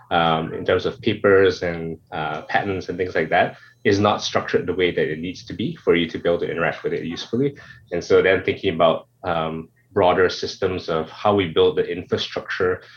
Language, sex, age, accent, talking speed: English, male, 20-39, Malaysian, 215 wpm